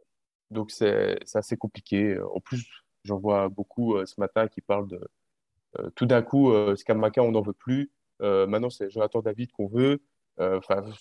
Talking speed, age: 185 wpm, 20-39